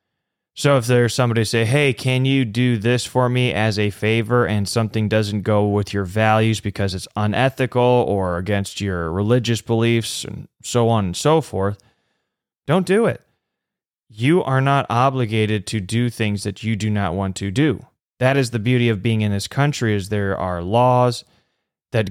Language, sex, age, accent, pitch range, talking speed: English, male, 20-39, American, 110-125 Hz, 180 wpm